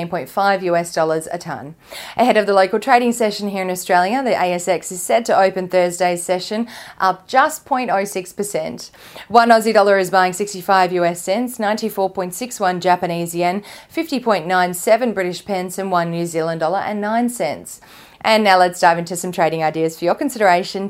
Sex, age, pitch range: female, 30-49, 180-215 Hz